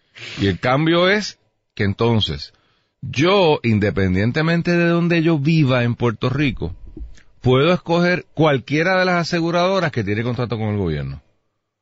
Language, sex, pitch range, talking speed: Spanish, male, 95-140 Hz, 135 wpm